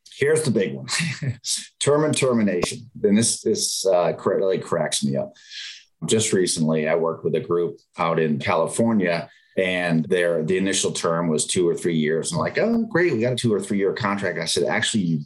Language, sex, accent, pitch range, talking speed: English, male, American, 85-110 Hz, 205 wpm